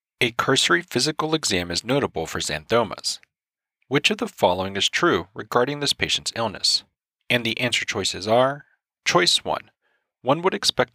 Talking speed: 155 wpm